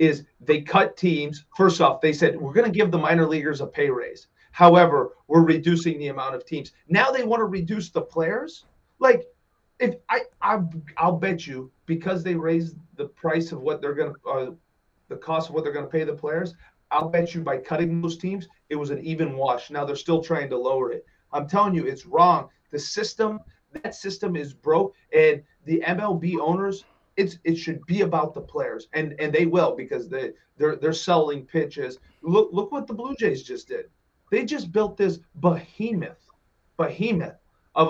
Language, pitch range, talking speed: English, 155-195 Hz, 200 wpm